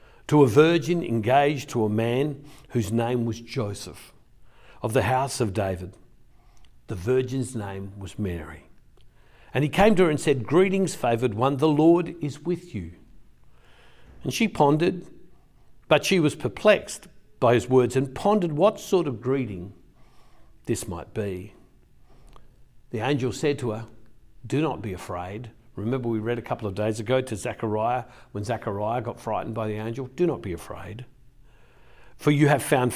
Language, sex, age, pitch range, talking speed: English, male, 60-79, 110-135 Hz, 160 wpm